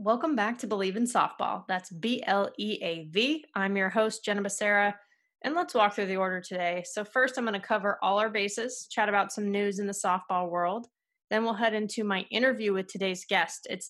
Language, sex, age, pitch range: English, female, 20-39, 190-225 Hz